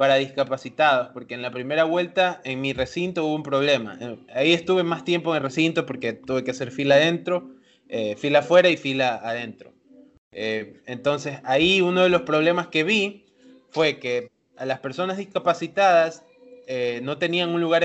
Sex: male